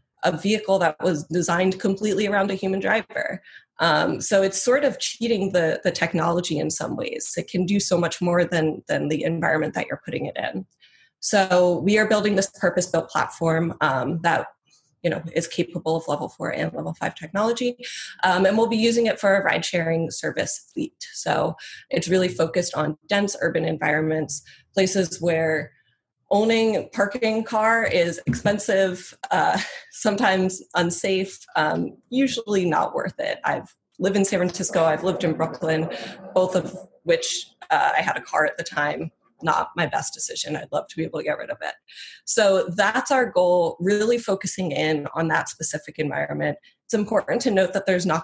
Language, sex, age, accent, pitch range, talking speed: English, female, 20-39, American, 165-205 Hz, 180 wpm